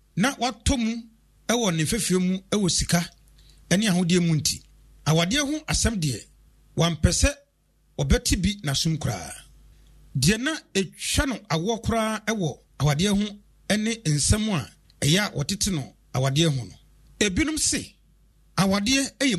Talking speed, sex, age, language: 105 wpm, male, 40-59, English